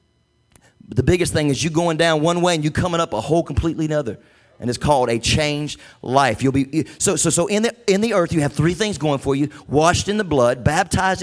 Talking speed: 245 wpm